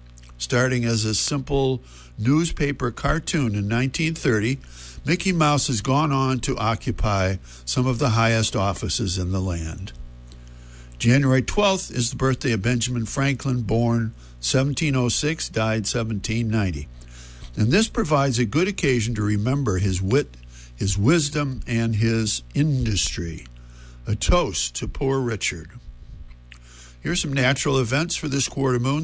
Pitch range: 90-135 Hz